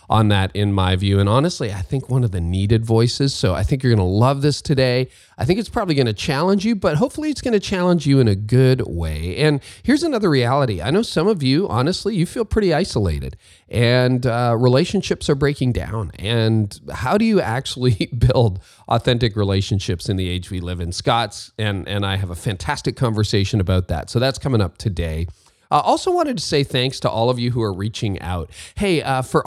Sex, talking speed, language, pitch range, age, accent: male, 215 wpm, English, 100-140 Hz, 40-59, American